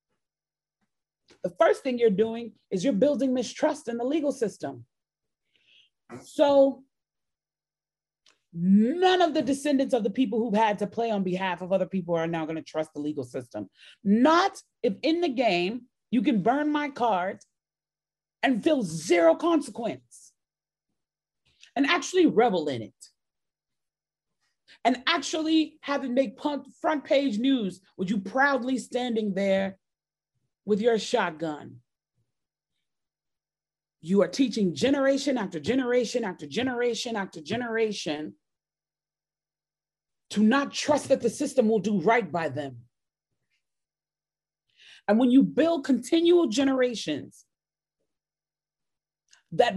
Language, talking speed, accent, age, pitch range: English, 120 wpm, American, 30-49, 195-285 Hz